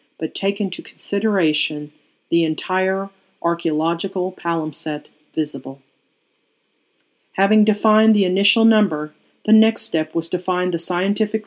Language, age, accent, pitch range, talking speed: English, 40-59, American, 165-200 Hz, 115 wpm